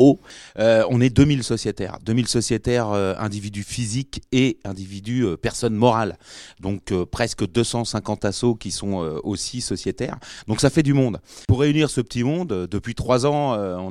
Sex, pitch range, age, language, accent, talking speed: male, 95-120 Hz, 30-49, French, French, 175 wpm